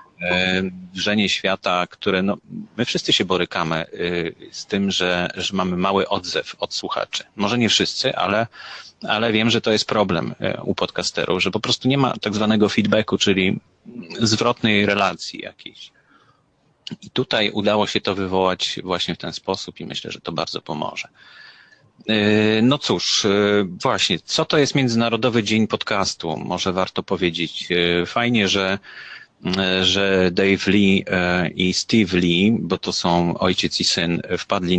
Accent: Polish